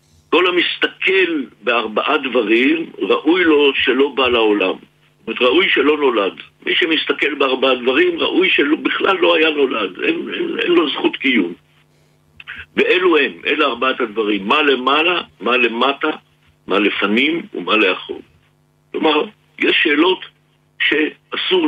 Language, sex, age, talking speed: Hebrew, male, 60-79, 125 wpm